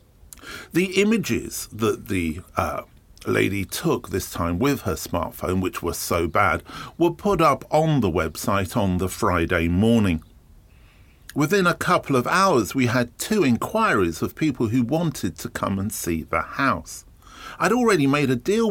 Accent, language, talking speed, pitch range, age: British, English, 160 wpm, 100-155 Hz, 50-69